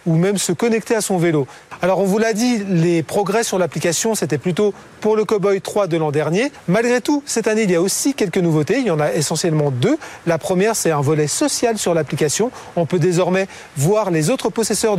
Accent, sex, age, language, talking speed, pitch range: French, male, 30-49, French, 225 wpm, 165-220 Hz